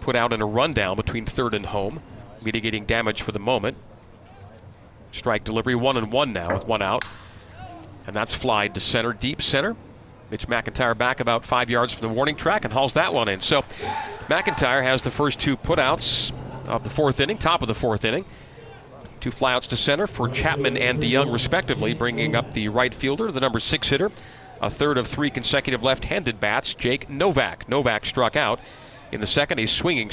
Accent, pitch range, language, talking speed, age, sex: American, 115-135 Hz, English, 190 wpm, 40-59, male